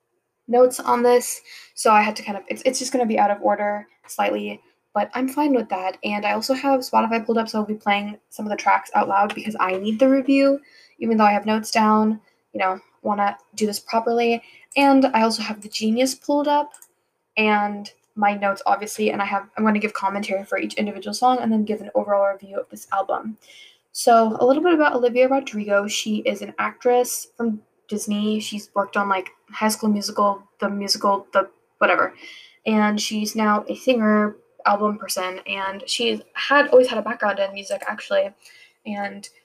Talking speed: 205 wpm